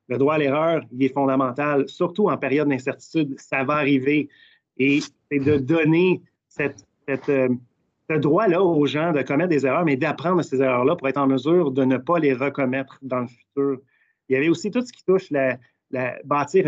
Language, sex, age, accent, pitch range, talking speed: French, male, 30-49, Canadian, 135-155 Hz, 185 wpm